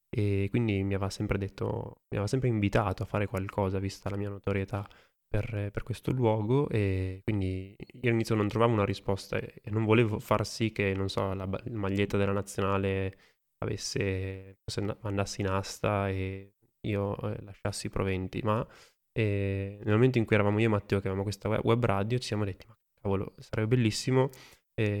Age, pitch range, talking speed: 20-39, 100-110 Hz, 175 wpm